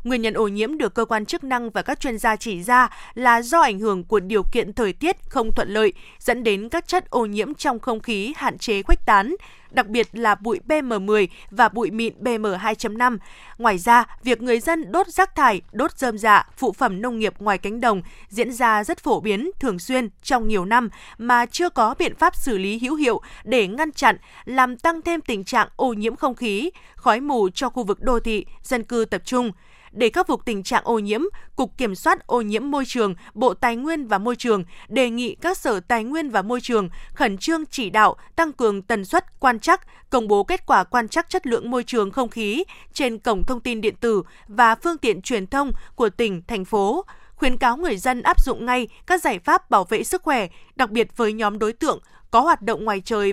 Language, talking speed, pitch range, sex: Vietnamese, 225 wpm, 215-280 Hz, female